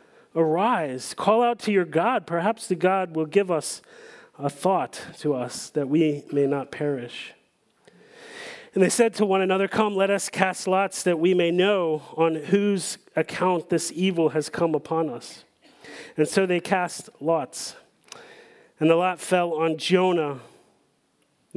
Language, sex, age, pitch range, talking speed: English, male, 40-59, 145-200 Hz, 155 wpm